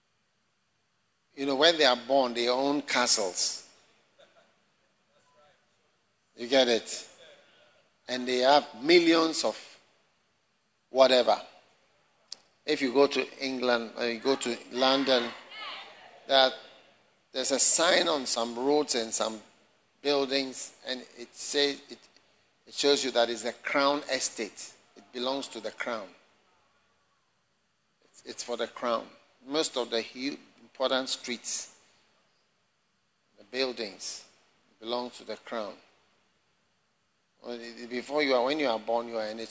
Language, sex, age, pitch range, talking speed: English, male, 50-69, 120-145 Hz, 125 wpm